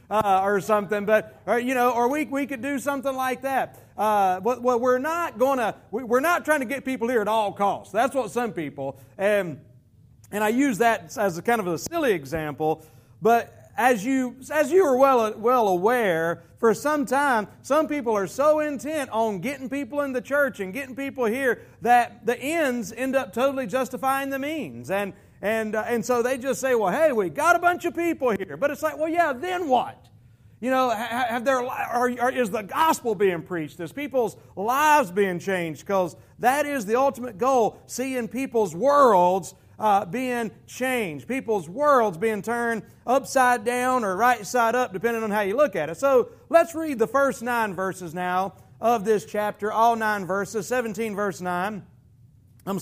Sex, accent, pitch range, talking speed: male, American, 200-270 Hz, 195 wpm